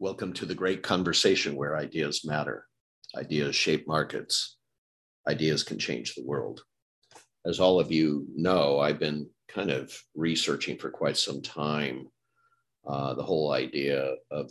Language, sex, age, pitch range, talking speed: English, male, 50-69, 75-95 Hz, 145 wpm